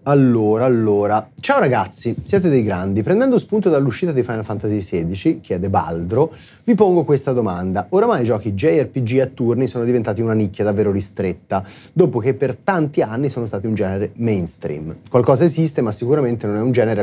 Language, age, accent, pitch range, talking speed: Italian, 30-49, native, 105-135 Hz, 175 wpm